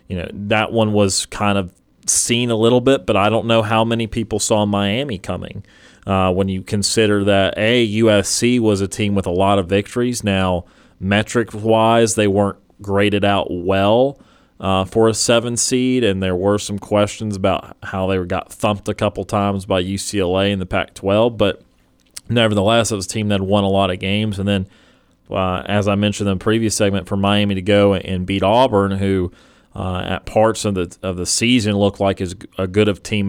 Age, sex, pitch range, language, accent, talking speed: 30-49, male, 95-110 Hz, English, American, 200 wpm